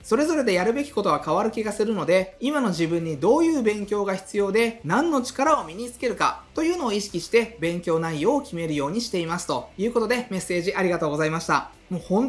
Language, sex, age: Japanese, male, 20-39